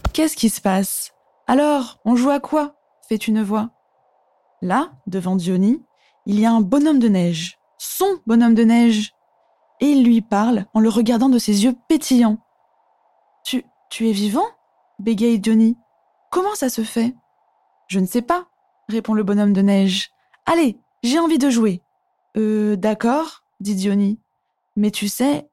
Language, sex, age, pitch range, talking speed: French, female, 20-39, 215-285 Hz, 185 wpm